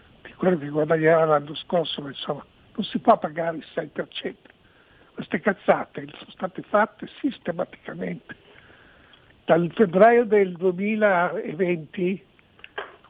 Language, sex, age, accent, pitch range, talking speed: Italian, male, 60-79, native, 165-200 Hz, 100 wpm